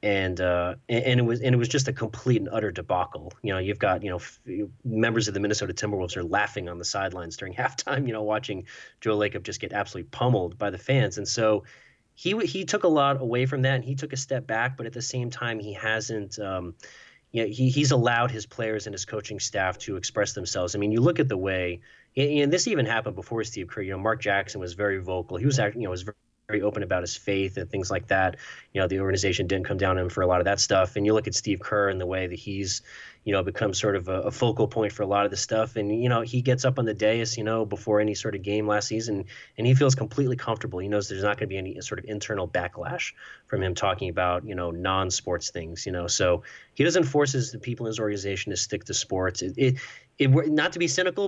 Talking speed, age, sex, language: 270 wpm, 30-49, male, English